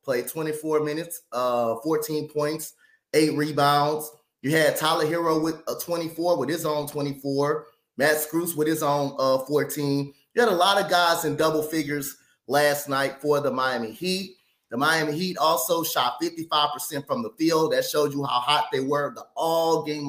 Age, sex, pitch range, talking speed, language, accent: 20-39, male, 150-195 Hz, 175 wpm, English, American